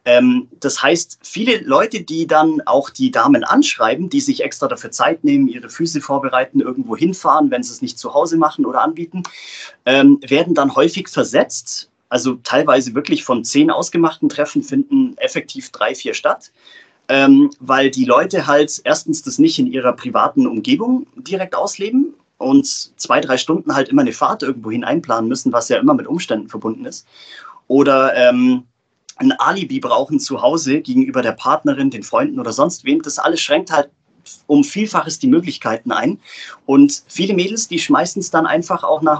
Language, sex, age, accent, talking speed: German, male, 30-49, German, 175 wpm